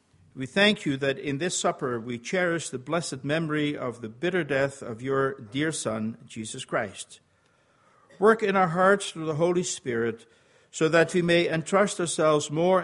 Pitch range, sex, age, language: 130-175 Hz, male, 50-69, English